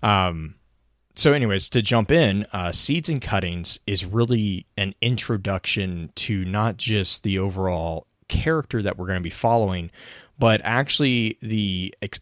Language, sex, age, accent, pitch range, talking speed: English, male, 30-49, American, 85-105 Hz, 145 wpm